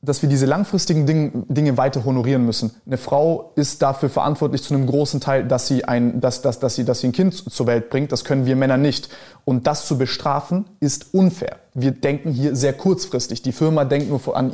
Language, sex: German, male